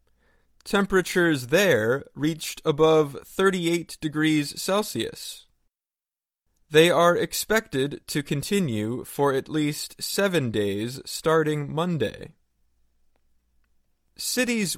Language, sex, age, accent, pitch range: Chinese, male, 20-39, American, 125-180 Hz